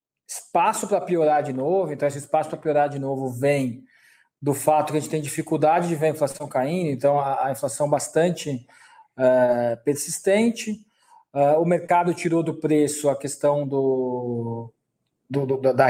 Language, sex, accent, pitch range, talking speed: Portuguese, male, Brazilian, 140-195 Hz, 145 wpm